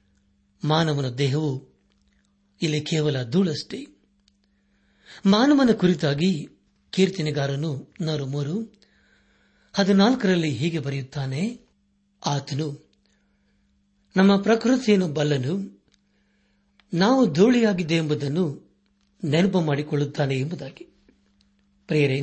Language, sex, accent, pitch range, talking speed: Kannada, male, native, 140-195 Hz, 60 wpm